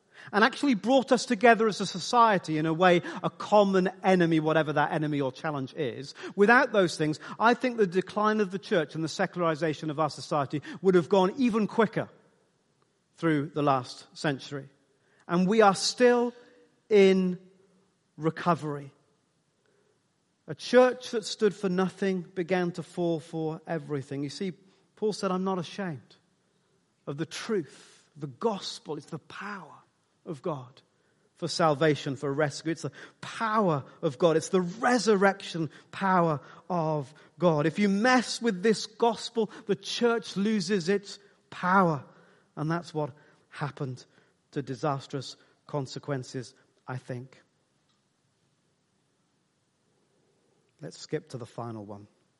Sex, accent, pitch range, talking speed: male, British, 150-200 Hz, 135 wpm